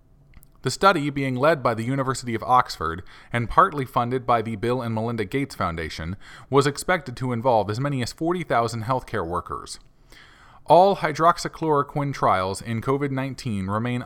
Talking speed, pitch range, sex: 150 wpm, 115-155 Hz, male